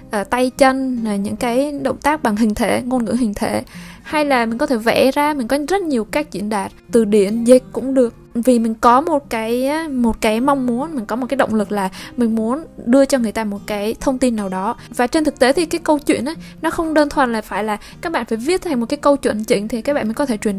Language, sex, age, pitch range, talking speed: Vietnamese, female, 20-39, 225-280 Hz, 275 wpm